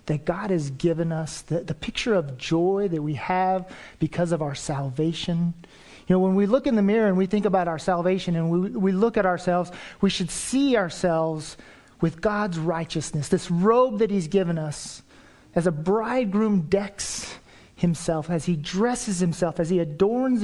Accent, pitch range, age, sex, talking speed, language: American, 165-205 Hz, 40-59, male, 180 wpm, English